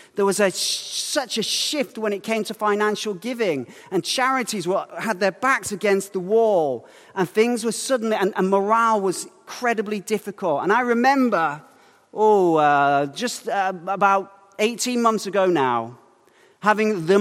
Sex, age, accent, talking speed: male, 40-59, British, 150 wpm